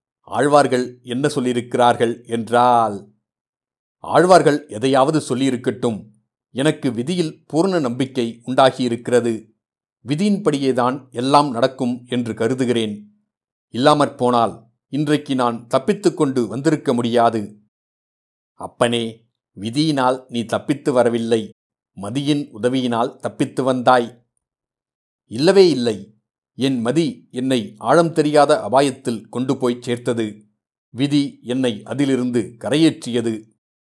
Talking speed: 85 wpm